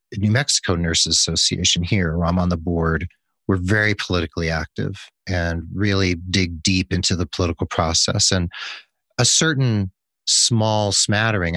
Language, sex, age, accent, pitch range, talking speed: English, male, 40-59, American, 90-120 Hz, 145 wpm